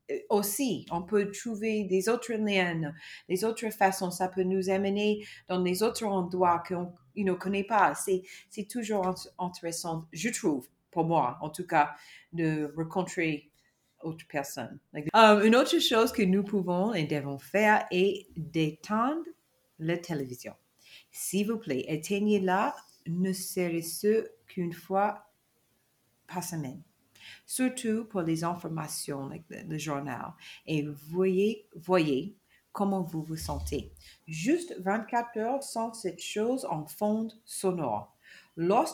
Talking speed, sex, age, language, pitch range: 135 wpm, female, 40-59, French, 165-220 Hz